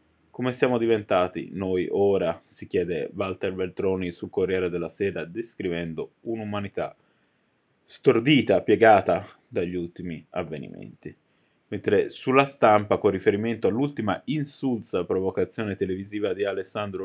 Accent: native